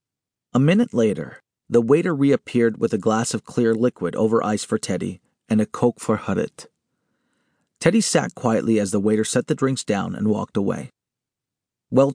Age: 40-59